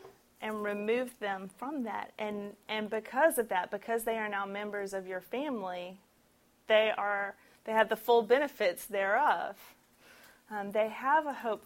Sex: female